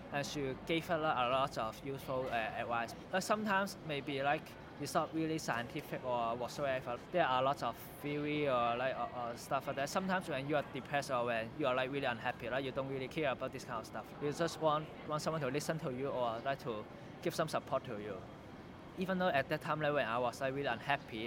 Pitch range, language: 125-155 Hz, English